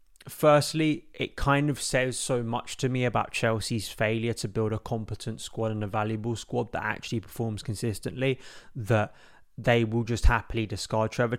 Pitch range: 110-130 Hz